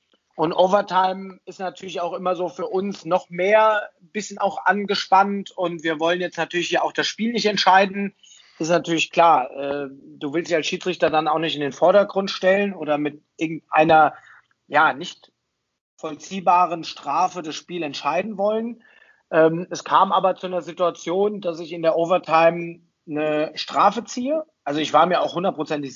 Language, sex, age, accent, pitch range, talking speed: German, male, 40-59, German, 165-210 Hz, 170 wpm